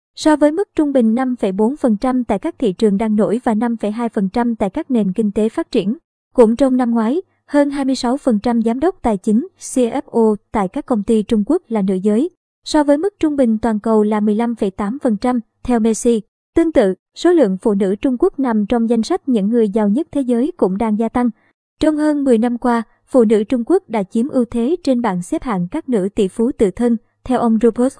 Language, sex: Vietnamese, male